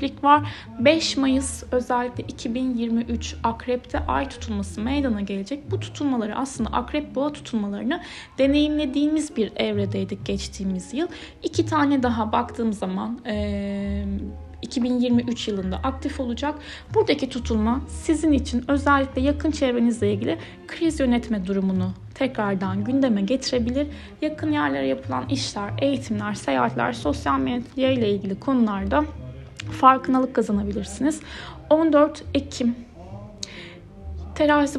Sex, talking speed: female, 105 wpm